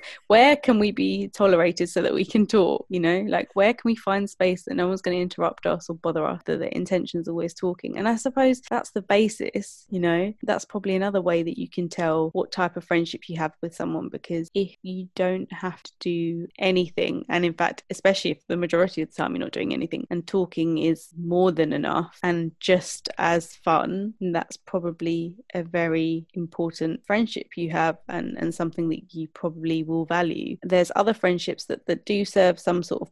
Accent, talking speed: British, 210 wpm